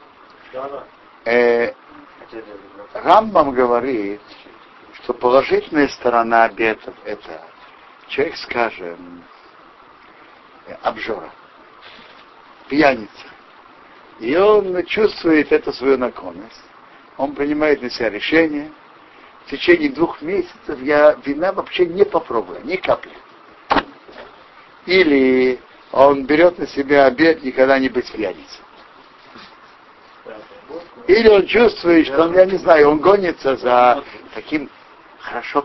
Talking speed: 95 wpm